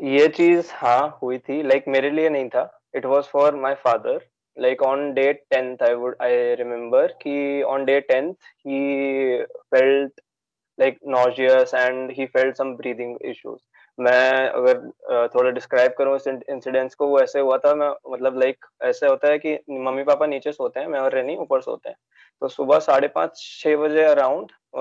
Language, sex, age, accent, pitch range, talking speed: English, male, 20-39, Indian, 130-155 Hz, 100 wpm